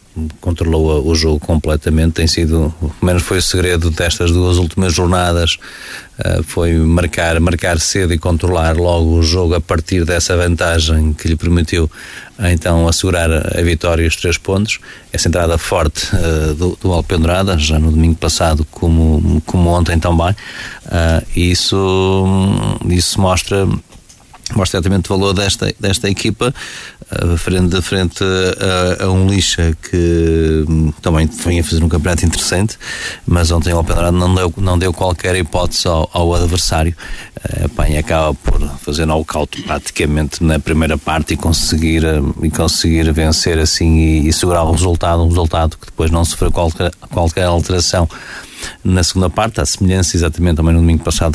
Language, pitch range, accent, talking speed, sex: Portuguese, 80-90 Hz, Portuguese, 150 wpm, male